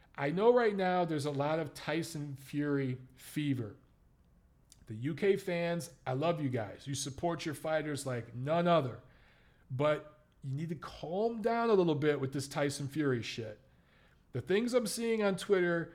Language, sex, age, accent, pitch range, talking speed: English, male, 40-59, American, 135-170 Hz, 170 wpm